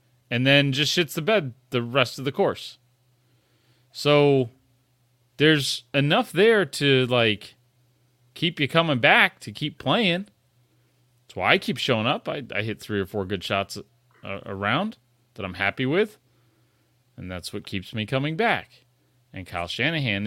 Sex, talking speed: male, 155 wpm